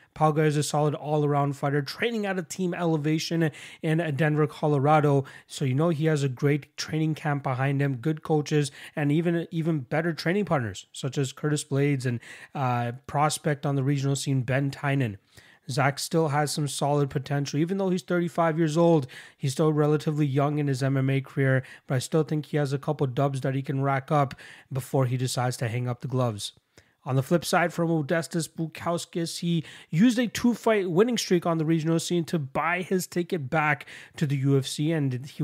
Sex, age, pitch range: male, 30-49, 140-170 Hz